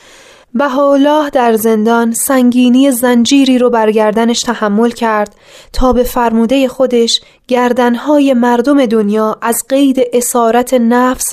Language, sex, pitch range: Persian, female, 215-275 Hz